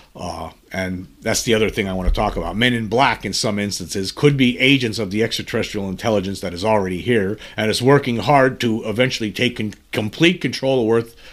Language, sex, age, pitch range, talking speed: English, male, 50-69, 100-130 Hz, 205 wpm